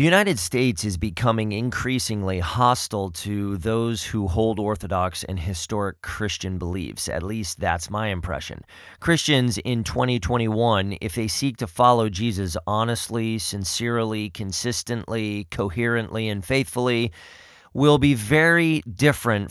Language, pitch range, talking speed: English, 100-130 Hz, 125 wpm